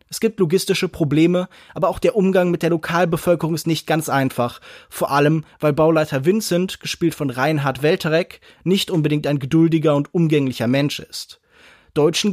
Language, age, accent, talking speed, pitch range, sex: German, 20-39, German, 160 wpm, 155-190 Hz, male